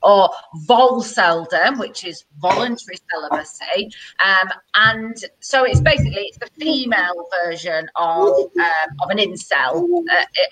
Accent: British